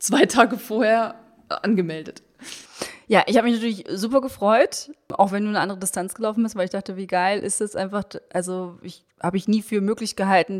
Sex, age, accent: female, 20-39, German